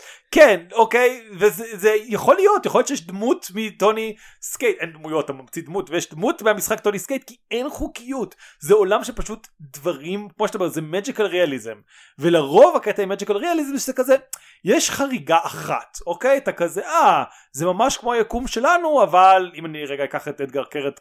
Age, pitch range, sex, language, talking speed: 30-49, 150-215 Hz, male, Hebrew, 170 wpm